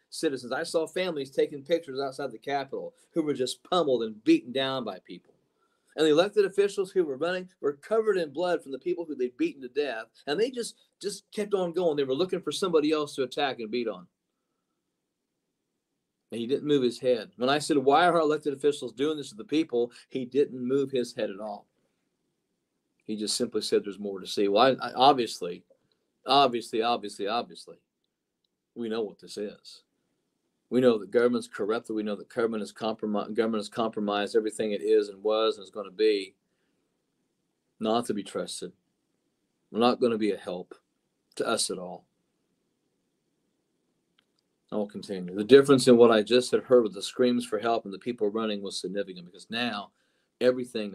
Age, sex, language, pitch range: 40-59, male, English, 115-175 Hz